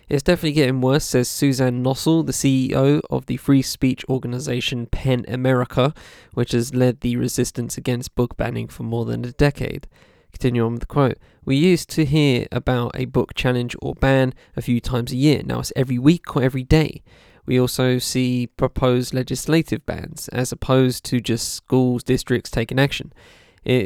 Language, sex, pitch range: English, male, 125-140 Hz